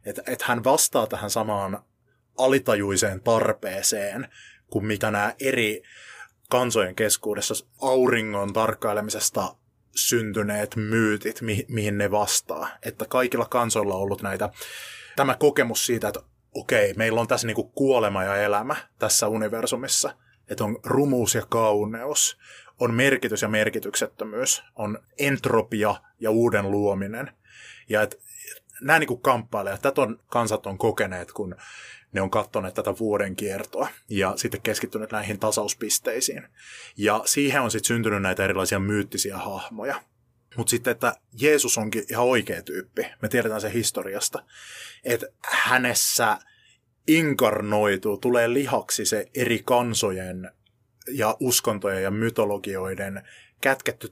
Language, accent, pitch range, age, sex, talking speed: Finnish, native, 105-120 Hz, 20-39, male, 125 wpm